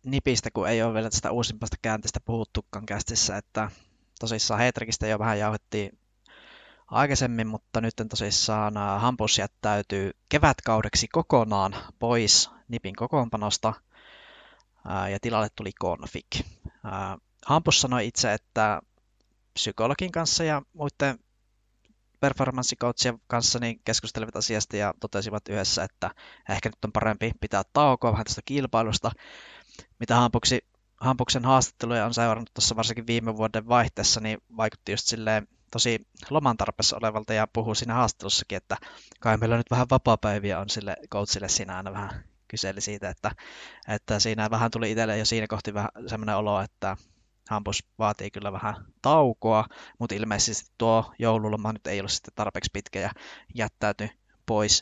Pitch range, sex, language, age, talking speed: 105-115 Hz, male, Finnish, 20-39, 140 wpm